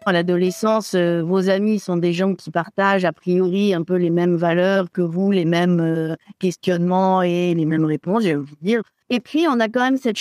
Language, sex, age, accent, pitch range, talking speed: French, female, 60-79, French, 185-245 Hz, 210 wpm